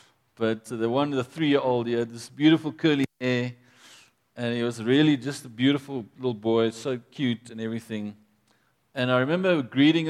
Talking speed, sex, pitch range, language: 165 wpm, male, 120-155 Hz, English